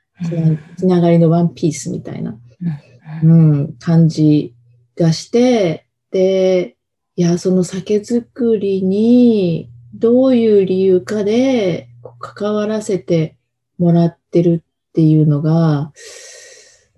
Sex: female